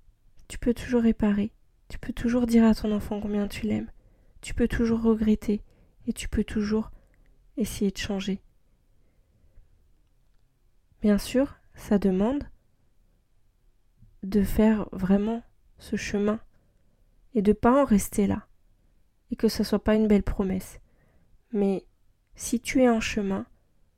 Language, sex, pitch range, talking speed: French, female, 190-225 Hz, 140 wpm